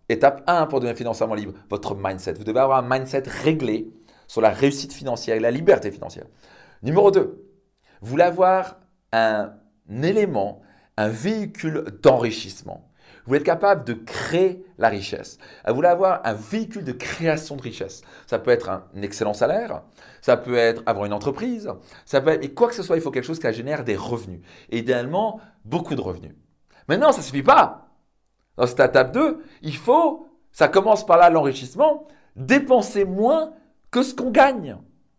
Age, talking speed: 40-59, 175 wpm